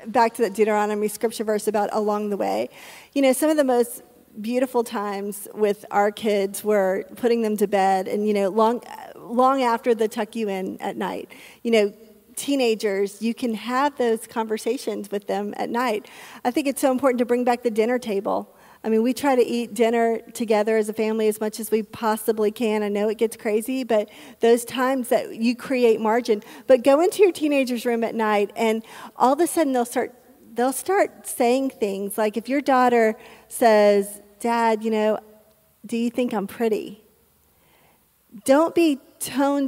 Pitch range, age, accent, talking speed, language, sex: 220-265 Hz, 40-59, American, 190 wpm, English, female